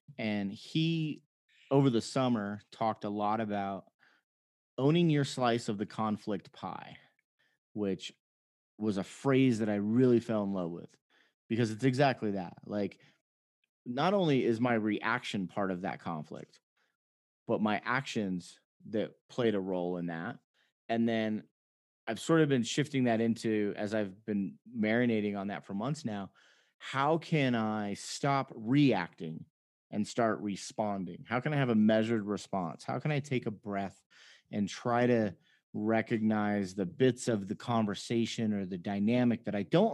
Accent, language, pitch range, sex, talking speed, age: American, English, 100-125 Hz, male, 155 wpm, 30-49